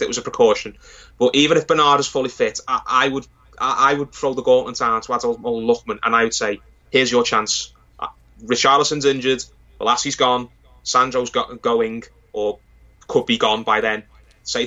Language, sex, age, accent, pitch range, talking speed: English, male, 20-39, British, 115-155 Hz, 185 wpm